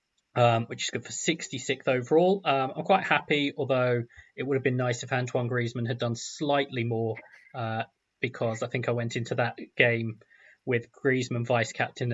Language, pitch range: English, 115-135 Hz